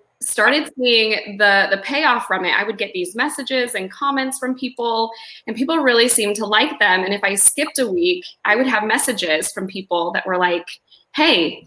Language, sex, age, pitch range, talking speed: English, female, 20-39, 180-230 Hz, 200 wpm